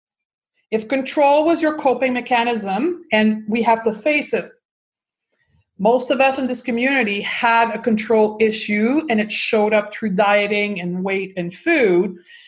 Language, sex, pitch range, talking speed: English, female, 210-260 Hz, 155 wpm